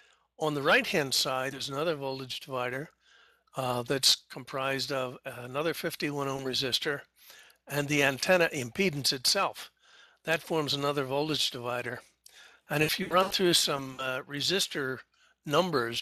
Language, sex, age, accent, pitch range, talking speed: English, male, 60-79, American, 130-155 Hz, 130 wpm